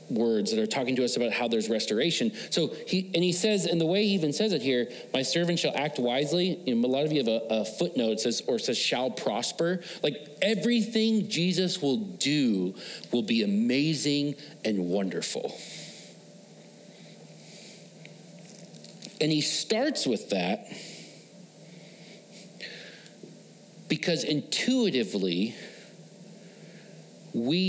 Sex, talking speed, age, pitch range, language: male, 130 wpm, 40-59, 145-200 Hz, English